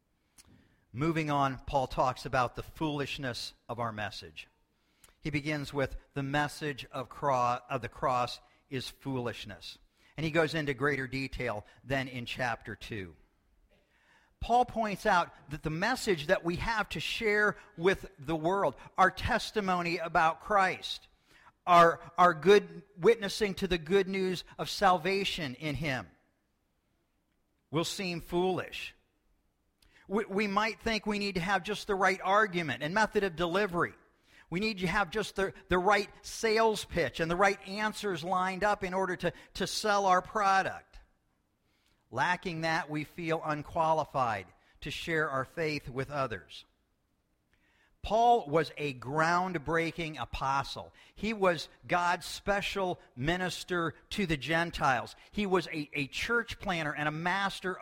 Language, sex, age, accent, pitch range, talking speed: English, male, 50-69, American, 135-195 Hz, 140 wpm